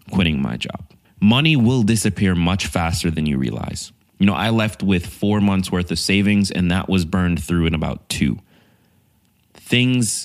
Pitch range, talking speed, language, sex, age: 85-105 Hz, 175 wpm, English, male, 20-39